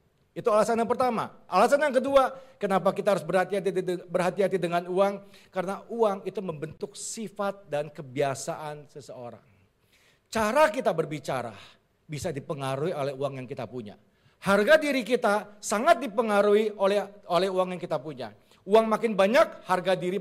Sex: male